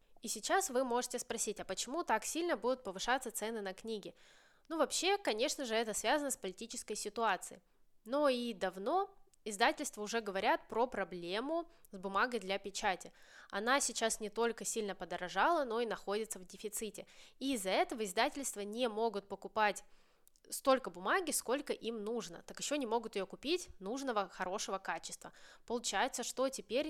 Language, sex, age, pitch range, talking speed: Russian, female, 20-39, 200-265 Hz, 155 wpm